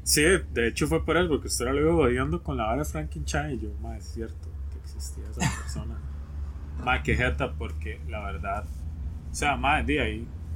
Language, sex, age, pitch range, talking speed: Spanish, male, 20-39, 70-90 Hz, 200 wpm